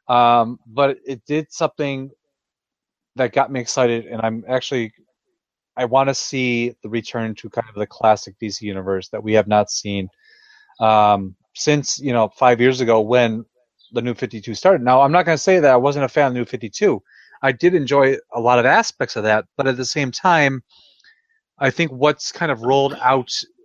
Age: 30-49